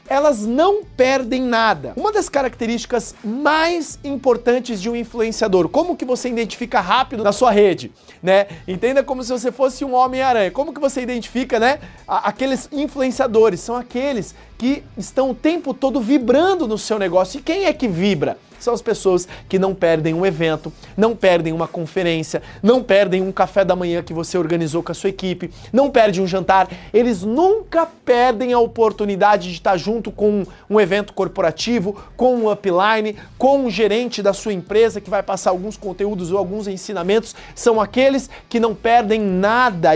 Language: Portuguese